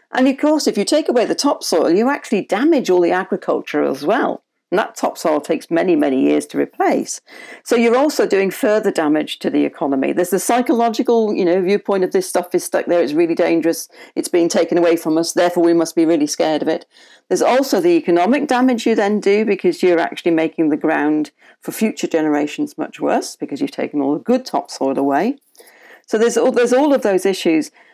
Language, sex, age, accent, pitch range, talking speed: English, female, 50-69, British, 165-235 Hz, 215 wpm